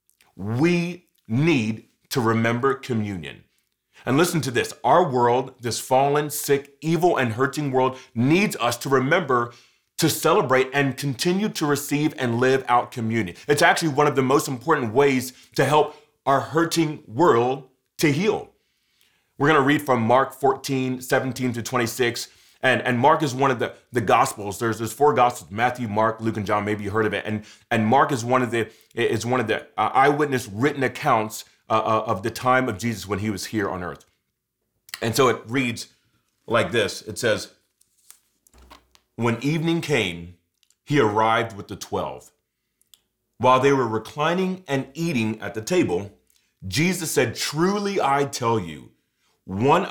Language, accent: English, American